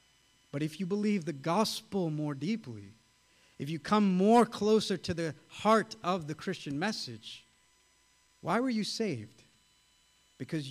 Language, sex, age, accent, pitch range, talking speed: English, male, 50-69, American, 160-225 Hz, 140 wpm